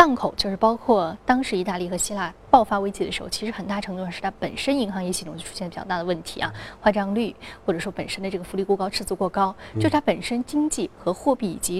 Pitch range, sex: 180-230 Hz, female